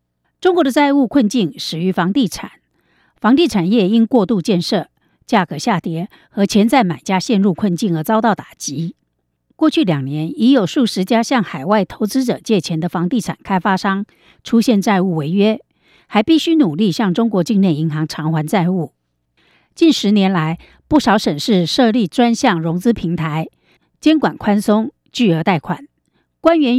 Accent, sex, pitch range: American, female, 175-245 Hz